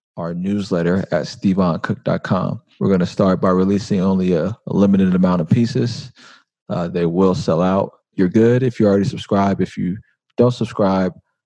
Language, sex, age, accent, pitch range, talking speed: English, male, 20-39, American, 95-105 Hz, 170 wpm